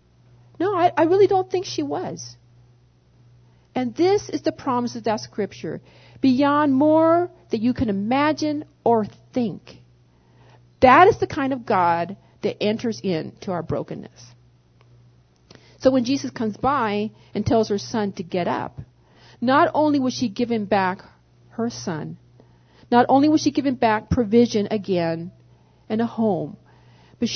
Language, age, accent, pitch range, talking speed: English, 40-59, American, 165-270 Hz, 145 wpm